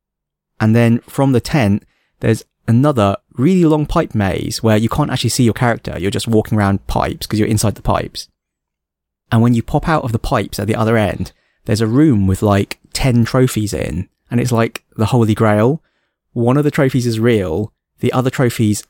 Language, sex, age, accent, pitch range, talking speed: English, male, 20-39, British, 100-125 Hz, 200 wpm